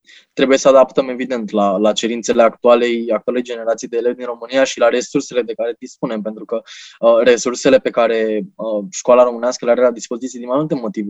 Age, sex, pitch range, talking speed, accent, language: 20-39, male, 120-140 Hz, 200 wpm, native, Romanian